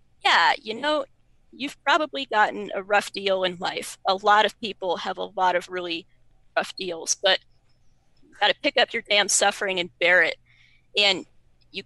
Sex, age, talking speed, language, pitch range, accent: female, 30-49, 180 wpm, English, 190-260 Hz, American